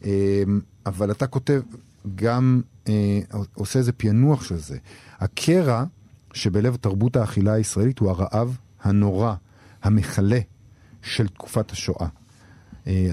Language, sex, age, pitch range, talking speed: Hebrew, male, 50-69, 100-125 Hz, 105 wpm